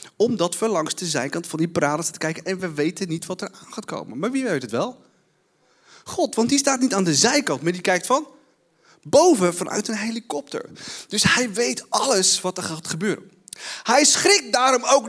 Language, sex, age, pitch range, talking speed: Dutch, male, 30-49, 170-240 Hz, 205 wpm